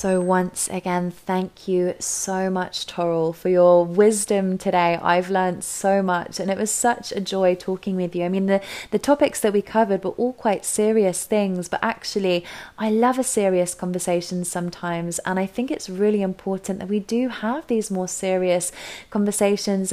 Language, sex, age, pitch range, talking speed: English, female, 20-39, 180-210 Hz, 180 wpm